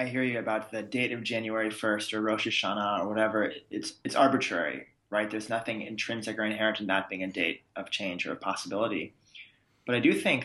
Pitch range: 100-115 Hz